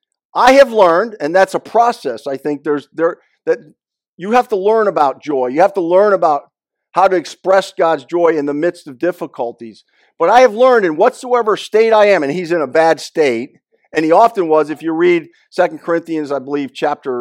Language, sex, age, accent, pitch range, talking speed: English, male, 50-69, American, 170-255 Hz, 210 wpm